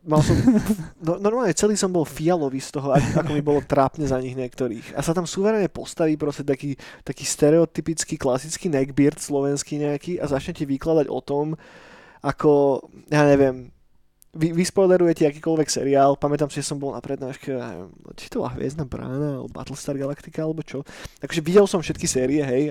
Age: 20-39